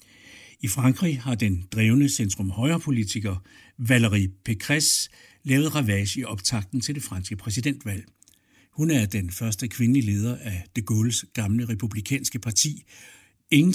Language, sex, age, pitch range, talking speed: Danish, male, 60-79, 105-140 Hz, 120 wpm